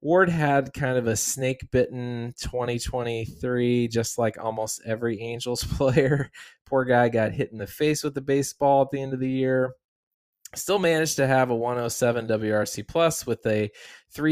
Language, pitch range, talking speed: English, 110-140 Hz, 200 wpm